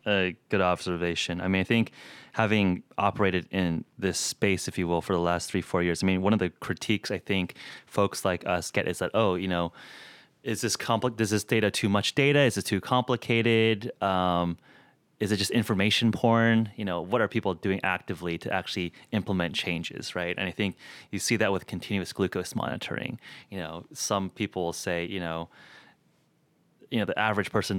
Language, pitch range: English, 90-110 Hz